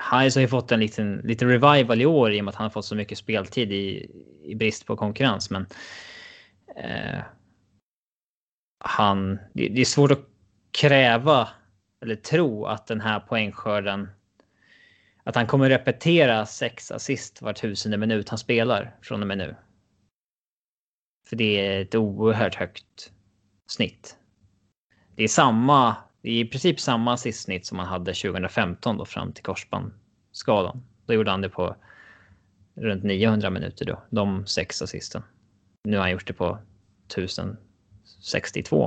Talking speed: 150 wpm